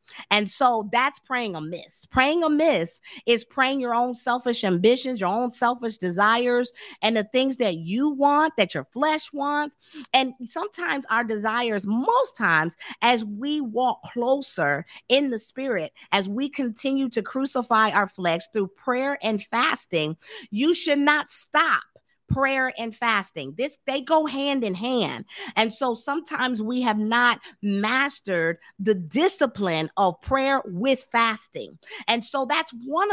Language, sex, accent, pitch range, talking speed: English, female, American, 215-275 Hz, 145 wpm